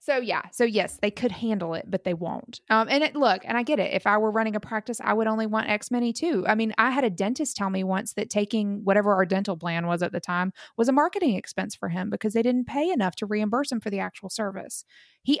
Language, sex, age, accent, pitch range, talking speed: English, female, 20-39, American, 185-230 Hz, 275 wpm